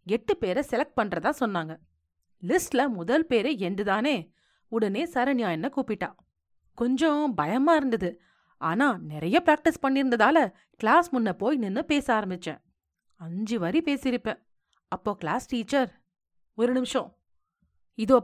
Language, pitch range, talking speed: Tamil, 185-270 Hz, 115 wpm